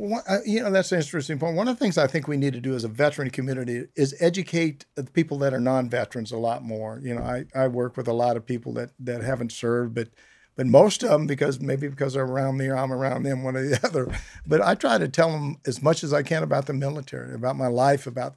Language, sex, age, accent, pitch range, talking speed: English, male, 50-69, American, 125-155 Hz, 265 wpm